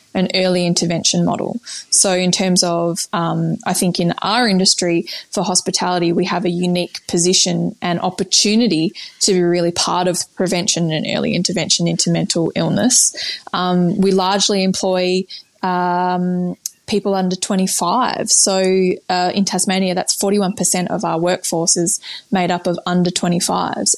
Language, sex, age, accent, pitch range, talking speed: English, female, 20-39, Australian, 175-200 Hz, 145 wpm